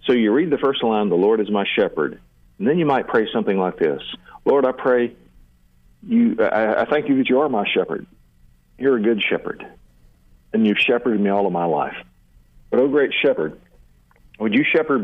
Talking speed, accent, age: 205 wpm, American, 50-69